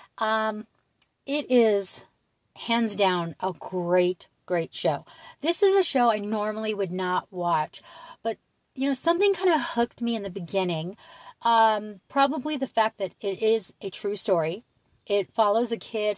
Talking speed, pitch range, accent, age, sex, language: 160 wpm, 190-240 Hz, American, 40-59, female, English